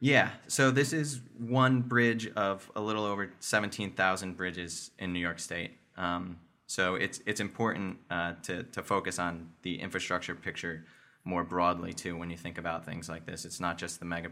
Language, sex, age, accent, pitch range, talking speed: English, male, 20-39, American, 85-105 Hz, 185 wpm